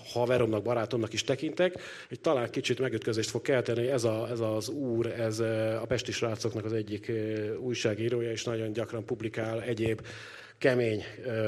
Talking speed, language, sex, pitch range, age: 140 wpm, Hungarian, male, 110-130 Hz, 40-59